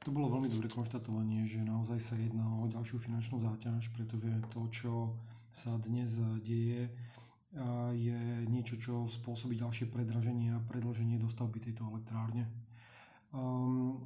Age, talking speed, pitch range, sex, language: 30-49, 130 wpm, 115-130 Hz, male, Slovak